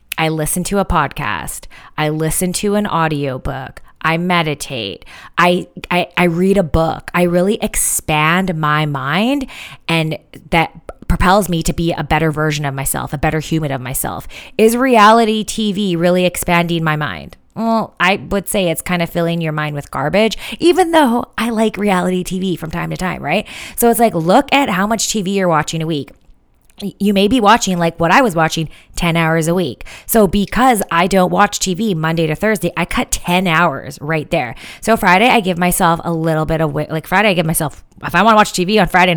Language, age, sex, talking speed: English, 20-39, female, 200 wpm